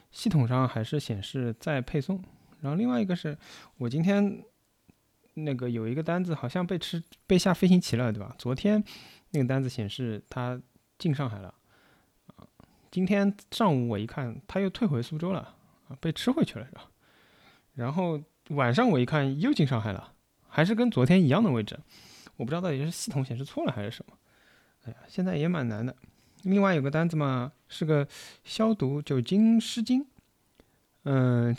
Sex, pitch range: male, 120-175 Hz